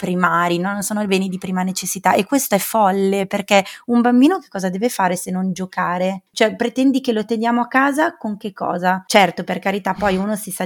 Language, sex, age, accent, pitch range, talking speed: Italian, female, 20-39, native, 185-215 Hz, 220 wpm